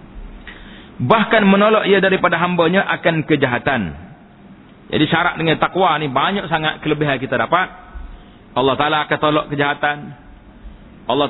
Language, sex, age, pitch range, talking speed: Malay, male, 40-59, 150-190 Hz, 120 wpm